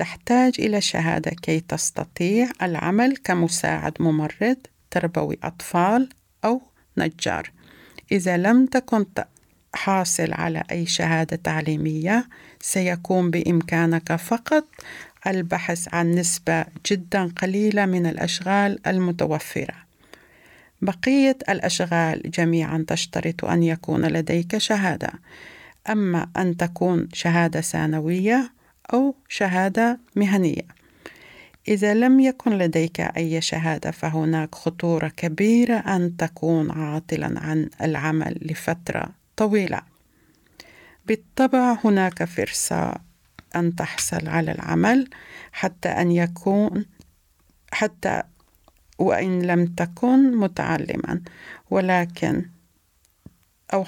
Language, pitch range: Swedish, 165-205 Hz